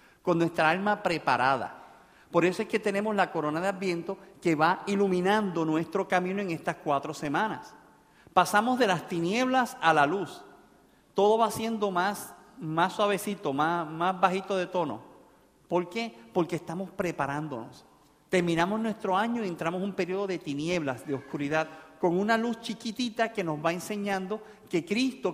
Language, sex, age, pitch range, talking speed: Spanish, male, 50-69, 160-205 Hz, 160 wpm